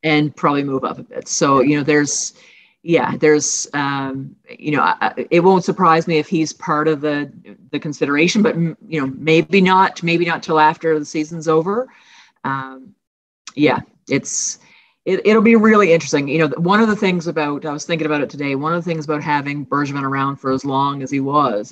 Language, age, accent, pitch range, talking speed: English, 40-59, American, 145-170 Hz, 200 wpm